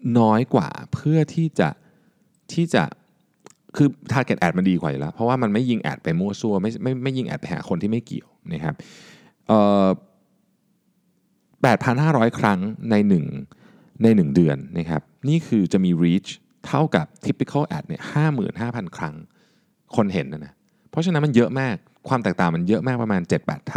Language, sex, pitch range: Thai, male, 100-160 Hz